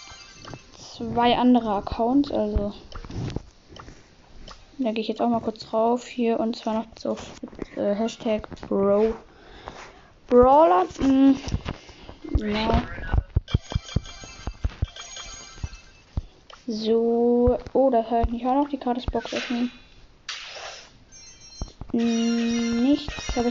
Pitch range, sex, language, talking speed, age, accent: 225-255 Hz, female, German, 95 wpm, 10-29, German